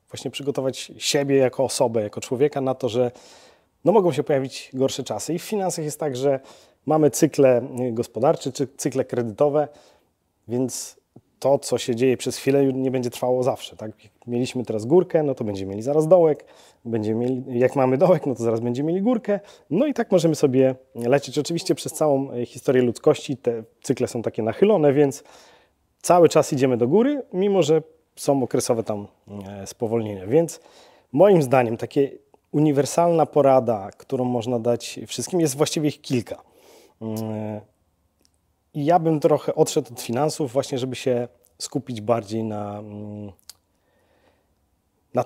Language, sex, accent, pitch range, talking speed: Polish, male, native, 120-150 Hz, 150 wpm